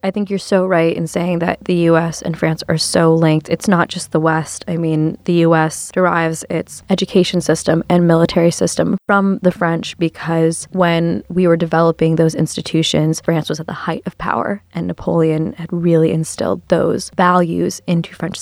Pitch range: 165-190 Hz